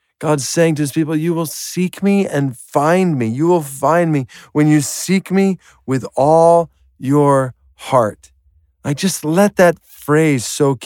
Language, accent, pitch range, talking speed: English, American, 130-185 Hz, 170 wpm